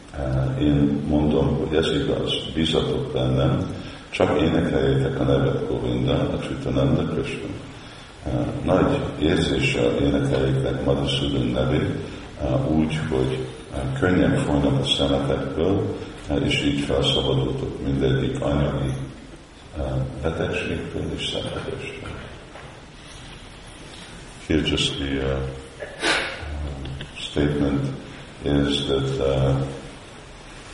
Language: Hungarian